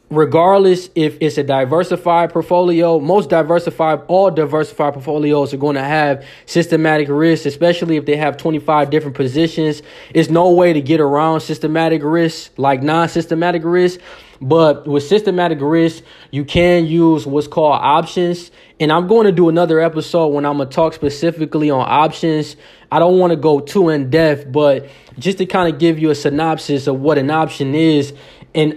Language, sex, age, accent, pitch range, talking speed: English, male, 20-39, American, 145-165 Hz, 175 wpm